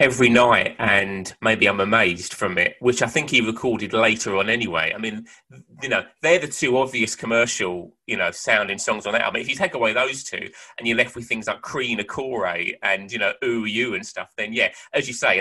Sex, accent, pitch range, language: male, British, 110-160 Hz, English